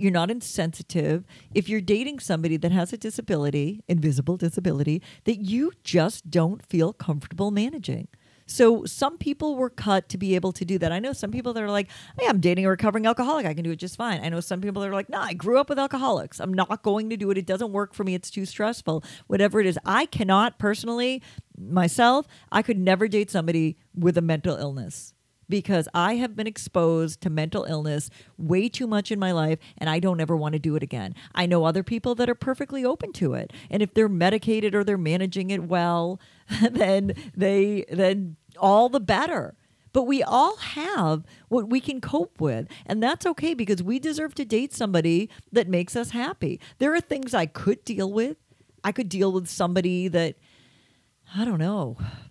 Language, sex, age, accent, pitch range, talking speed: English, female, 40-59, American, 170-230 Hz, 205 wpm